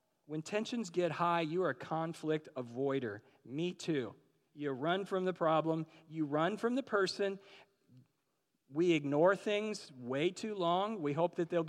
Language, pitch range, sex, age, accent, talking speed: English, 150-180 Hz, male, 40-59, American, 160 wpm